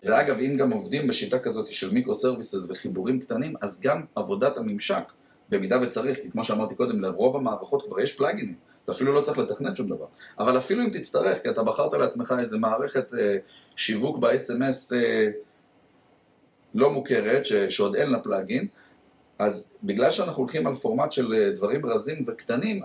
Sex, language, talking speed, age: male, Hebrew, 165 wpm, 30-49